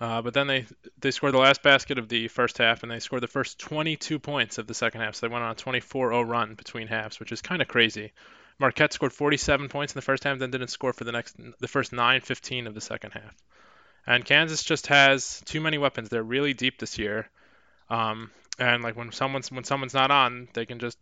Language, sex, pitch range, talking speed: English, male, 115-135 Hz, 235 wpm